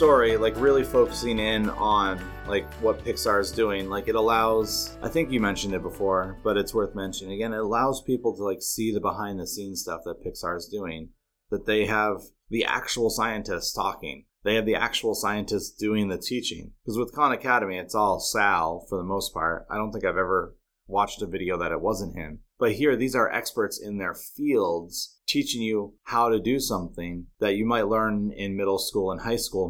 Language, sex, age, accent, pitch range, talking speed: English, male, 30-49, American, 95-110 Hz, 205 wpm